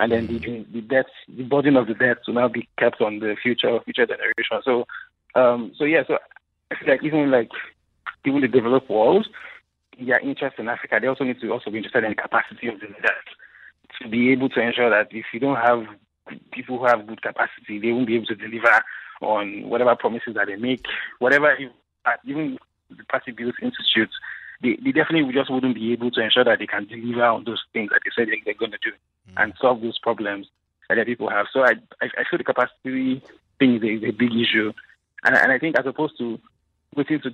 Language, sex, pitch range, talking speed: English, male, 115-135 Hz, 220 wpm